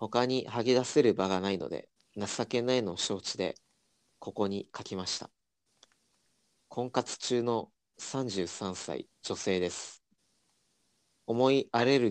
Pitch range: 100-125 Hz